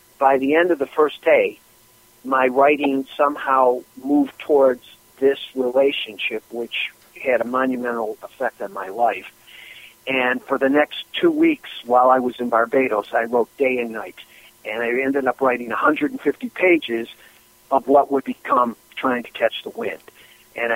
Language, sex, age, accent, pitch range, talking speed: English, male, 50-69, American, 120-140 Hz, 160 wpm